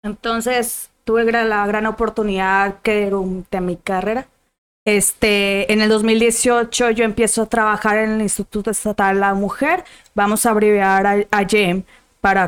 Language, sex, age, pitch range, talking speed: Spanish, female, 20-39, 210-245 Hz, 150 wpm